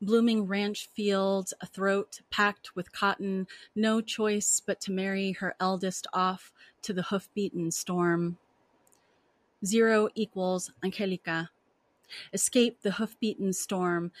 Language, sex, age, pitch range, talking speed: English, female, 30-49, 180-205 Hz, 115 wpm